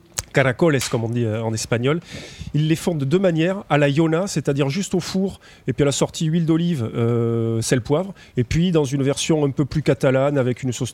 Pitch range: 125-150 Hz